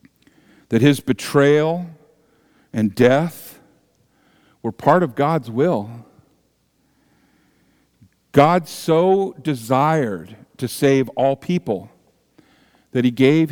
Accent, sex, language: American, male, English